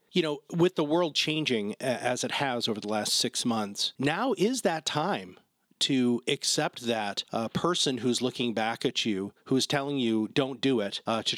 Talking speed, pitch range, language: 190 wpm, 120-165 Hz, English